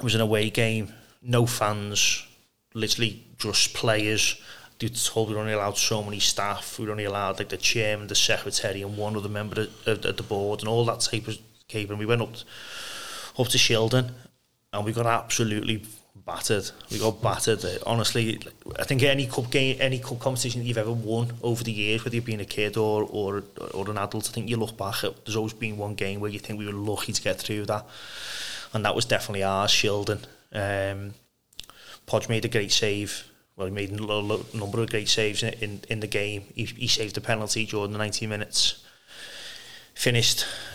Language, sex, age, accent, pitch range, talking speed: English, male, 30-49, British, 105-115 Hz, 205 wpm